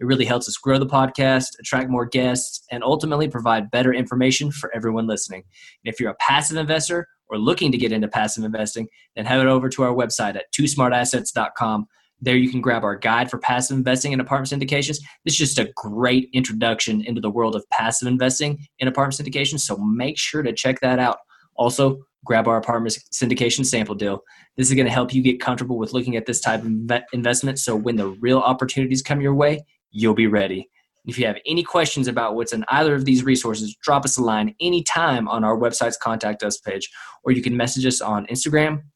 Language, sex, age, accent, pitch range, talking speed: English, male, 20-39, American, 115-135 Hz, 210 wpm